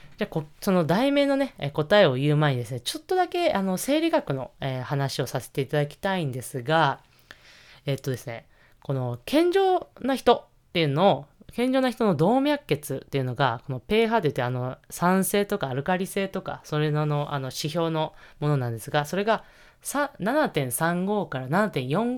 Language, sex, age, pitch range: Japanese, female, 20-39, 140-225 Hz